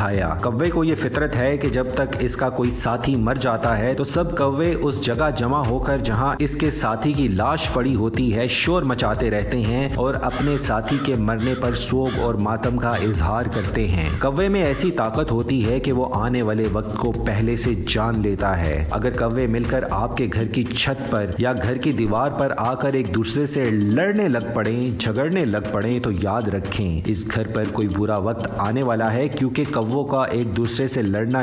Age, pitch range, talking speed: 30-49, 110-135 Hz, 210 wpm